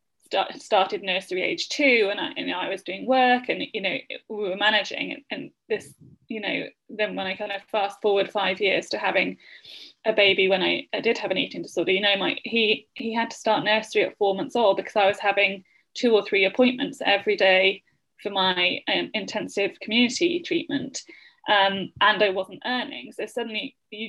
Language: English